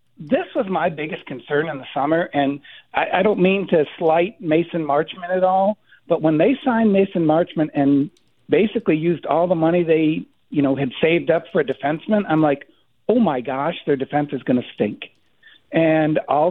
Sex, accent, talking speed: male, American, 195 wpm